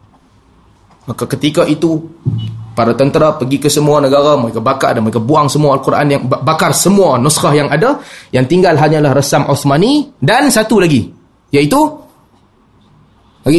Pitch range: 120-170 Hz